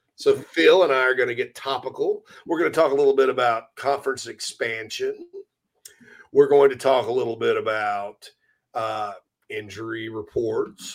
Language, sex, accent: English, male, American